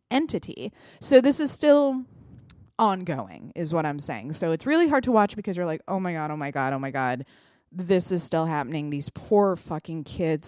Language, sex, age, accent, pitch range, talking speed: English, female, 20-39, American, 150-210 Hz, 205 wpm